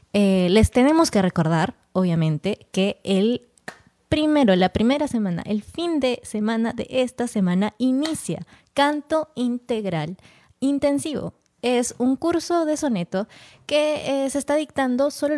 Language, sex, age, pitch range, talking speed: Spanish, female, 20-39, 195-265 Hz, 135 wpm